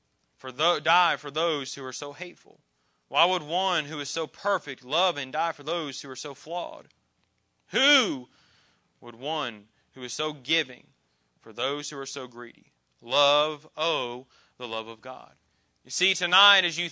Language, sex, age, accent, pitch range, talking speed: English, male, 30-49, American, 150-215 Hz, 175 wpm